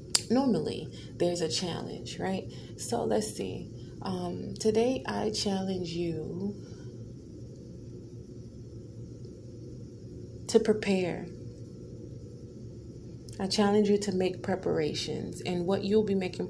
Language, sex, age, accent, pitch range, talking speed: English, female, 30-49, American, 120-195 Hz, 95 wpm